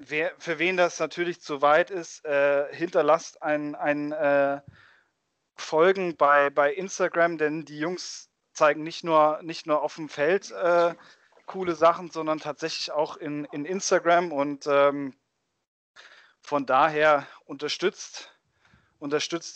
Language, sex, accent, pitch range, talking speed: German, male, German, 145-175 Hz, 130 wpm